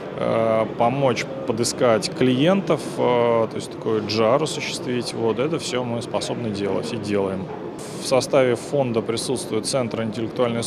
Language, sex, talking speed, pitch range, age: Russian, male, 125 wpm, 110-135 Hz, 20-39